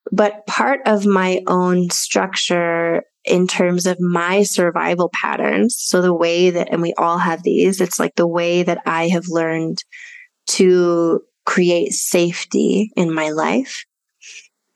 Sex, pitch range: female, 170-210 Hz